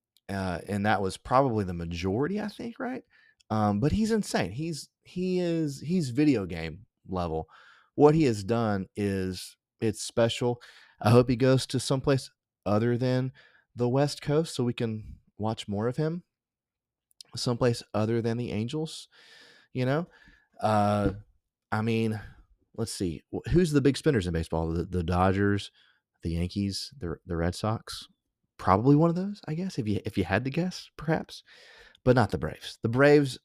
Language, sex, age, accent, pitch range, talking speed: English, male, 30-49, American, 95-140 Hz, 165 wpm